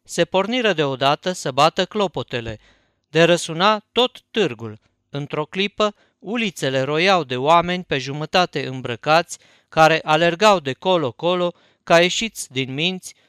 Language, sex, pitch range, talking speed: Romanian, male, 140-190 Hz, 120 wpm